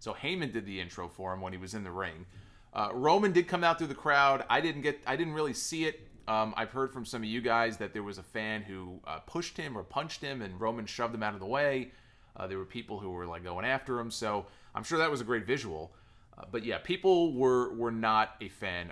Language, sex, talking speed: English, male, 265 wpm